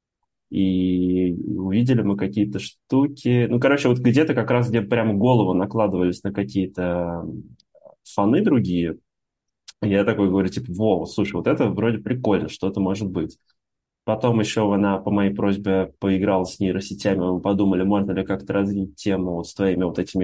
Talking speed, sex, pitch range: 155 wpm, male, 95-120 Hz